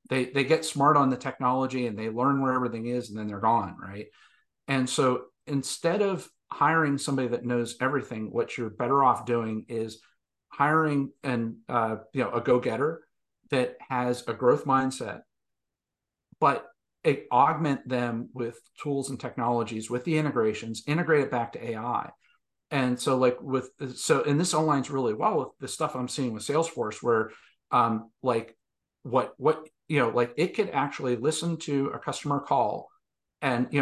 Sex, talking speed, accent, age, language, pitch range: male, 170 wpm, American, 50-69, English, 120-140 Hz